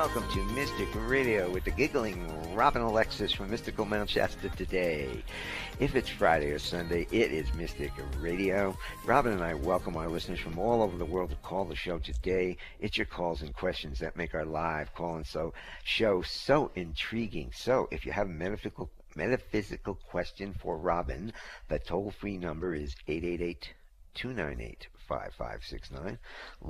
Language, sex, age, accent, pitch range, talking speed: English, male, 60-79, American, 75-100 Hz, 160 wpm